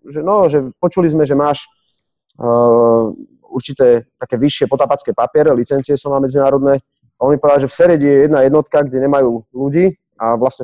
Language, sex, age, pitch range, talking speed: Slovak, male, 30-49, 120-145 Hz, 170 wpm